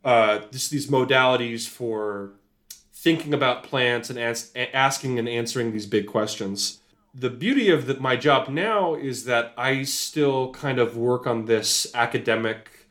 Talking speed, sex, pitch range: 140 wpm, male, 105-125 Hz